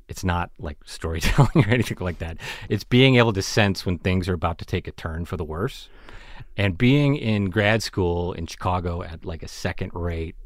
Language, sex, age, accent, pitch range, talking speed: English, male, 30-49, American, 85-105 Hz, 205 wpm